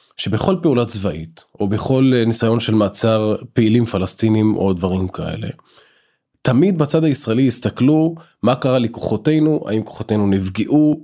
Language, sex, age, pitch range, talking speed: Hebrew, male, 20-39, 105-140 Hz, 125 wpm